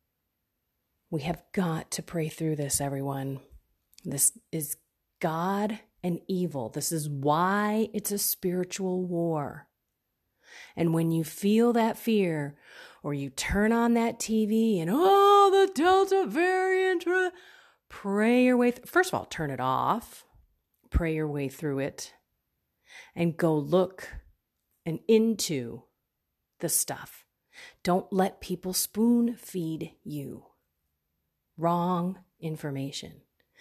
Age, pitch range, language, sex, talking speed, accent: 30-49, 140-210 Hz, English, female, 120 wpm, American